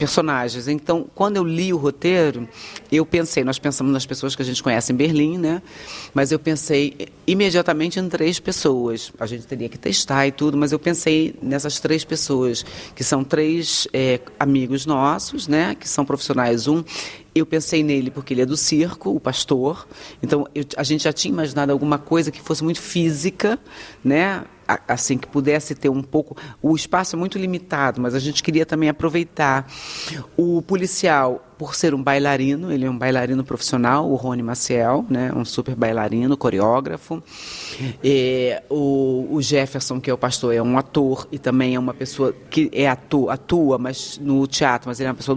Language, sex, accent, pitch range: Portuguese, female, Brazilian, 130-160 Hz